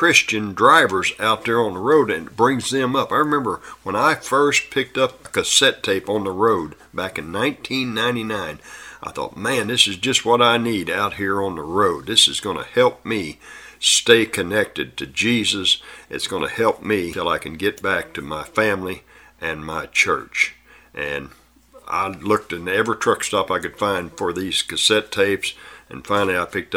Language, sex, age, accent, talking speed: English, male, 60-79, American, 195 wpm